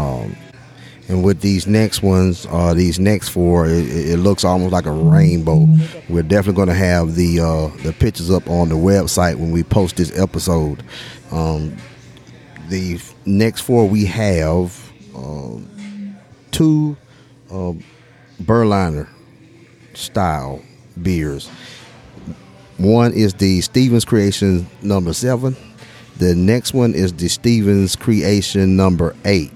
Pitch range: 85-110 Hz